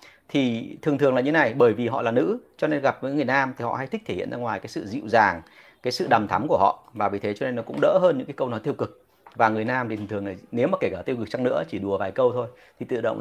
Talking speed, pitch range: 330 wpm, 110-165 Hz